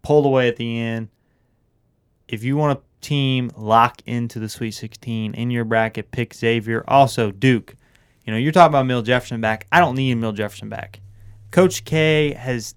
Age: 20-39